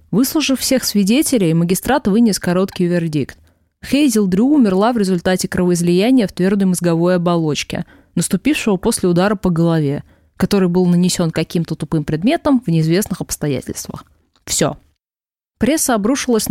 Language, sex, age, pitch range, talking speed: Russian, female, 20-39, 170-220 Hz, 125 wpm